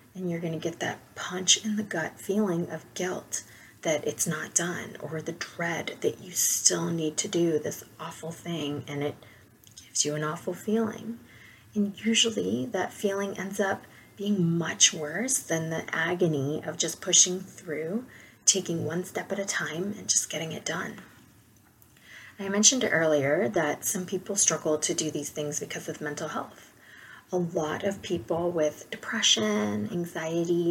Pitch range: 155-200 Hz